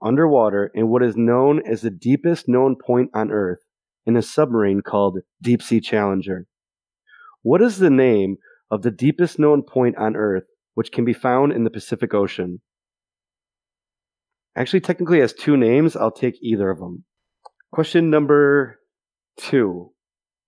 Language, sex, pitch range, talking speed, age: English, male, 110-150 Hz, 150 wpm, 30-49